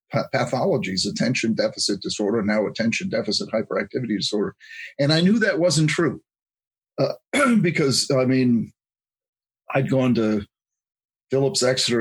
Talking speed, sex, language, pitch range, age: 120 wpm, male, English, 105-135 Hz, 50-69